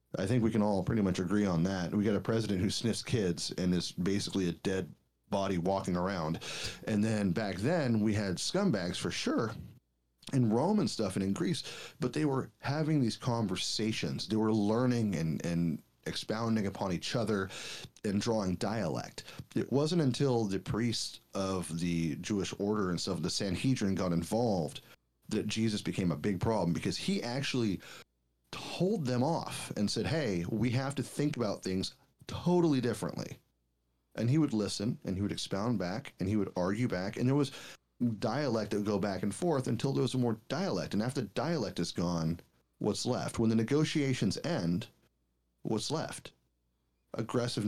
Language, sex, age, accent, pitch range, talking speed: English, male, 30-49, American, 95-125 Hz, 175 wpm